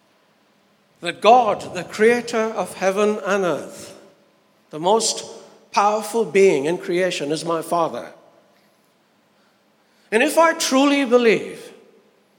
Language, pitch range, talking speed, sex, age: English, 180-245 Hz, 105 wpm, male, 60-79